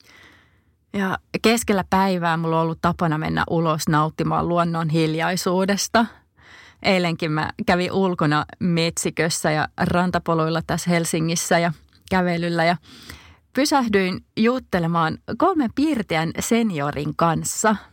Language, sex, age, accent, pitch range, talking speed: Finnish, female, 30-49, native, 165-210 Hz, 95 wpm